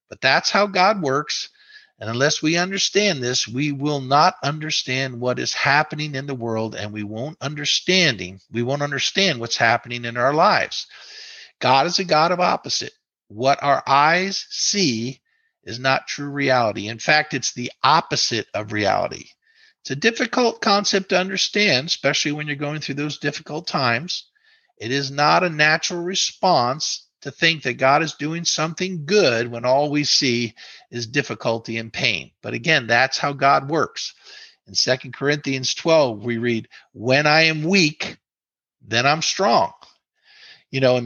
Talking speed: 160 wpm